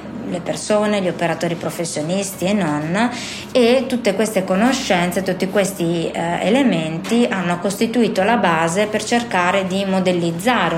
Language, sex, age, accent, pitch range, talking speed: Italian, female, 20-39, native, 170-210 Hz, 125 wpm